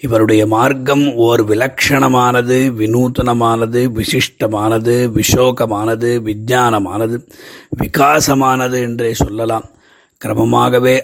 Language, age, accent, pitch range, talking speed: Tamil, 30-49, native, 110-130 Hz, 65 wpm